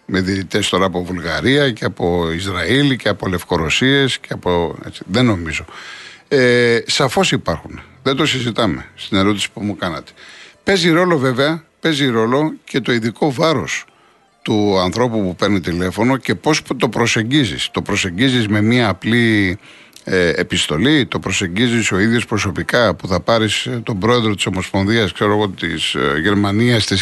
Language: Greek